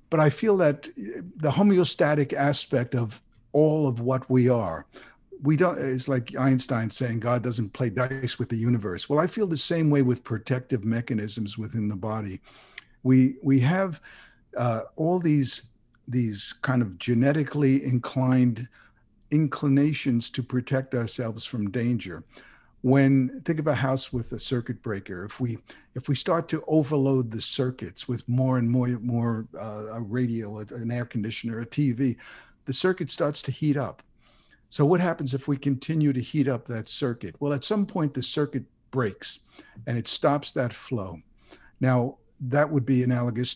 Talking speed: 165 wpm